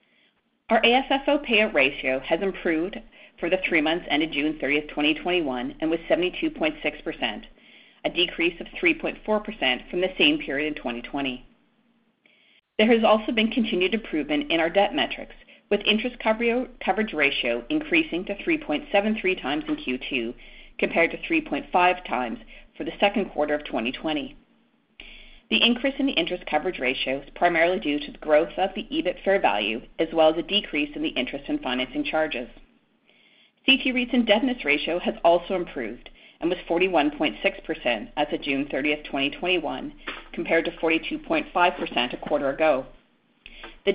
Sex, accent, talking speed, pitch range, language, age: female, American, 145 wpm, 160-245 Hz, English, 40-59